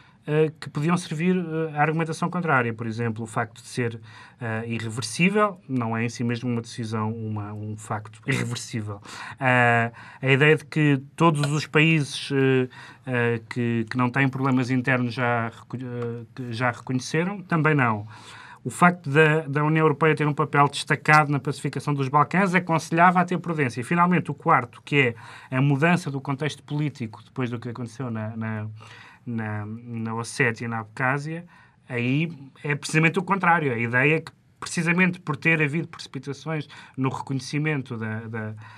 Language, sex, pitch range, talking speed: Portuguese, male, 115-155 Hz, 160 wpm